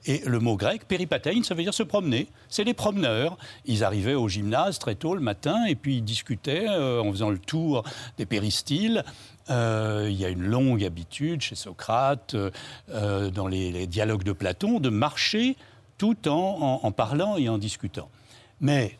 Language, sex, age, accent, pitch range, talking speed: French, male, 60-79, French, 105-145 Hz, 190 wpm